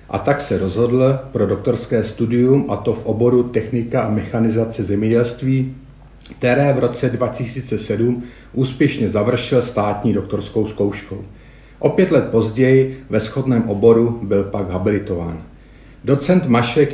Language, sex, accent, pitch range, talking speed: Czech, male, native, 105-125 Hz, 130 wpm